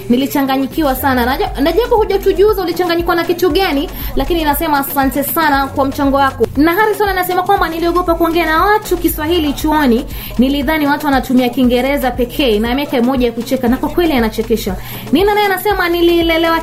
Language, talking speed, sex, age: Swahili, 155 wpm, female, 20-39